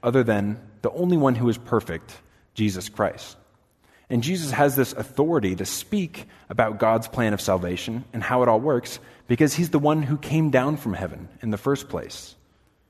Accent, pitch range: American, 95-135 Hz